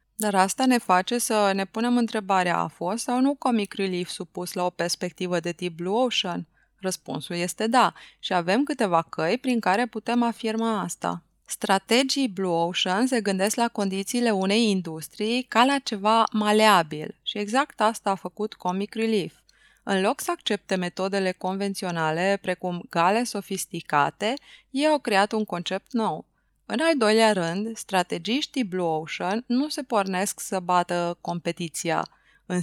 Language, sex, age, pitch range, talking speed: Romanian, female, 20-39, 180-235 Hz, 155 wpm